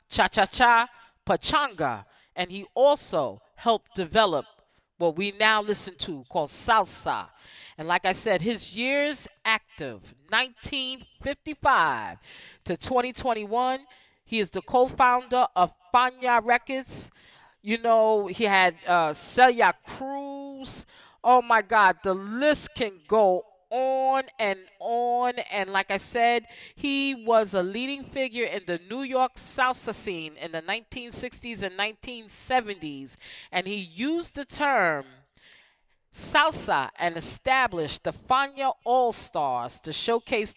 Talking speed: 120 wpm